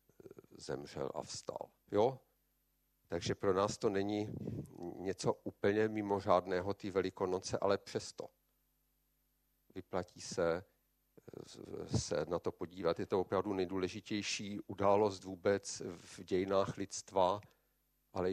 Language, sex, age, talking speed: Czech, male, 50-69, 110 wpm